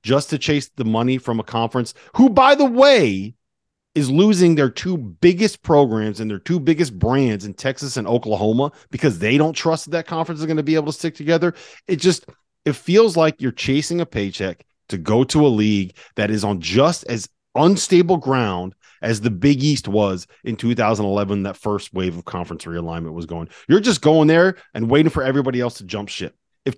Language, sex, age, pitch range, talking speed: English, male, 30-49, 105-150 Hz, 205 wpm